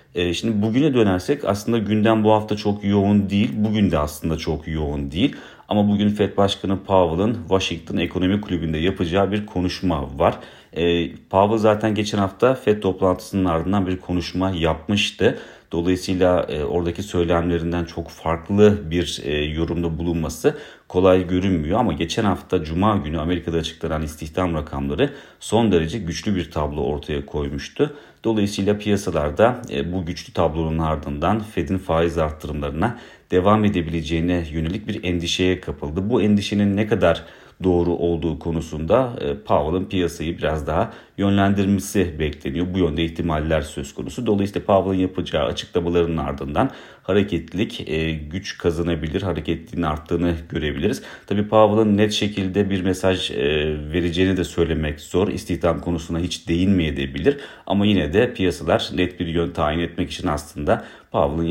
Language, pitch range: Turkish, 80-100 Hz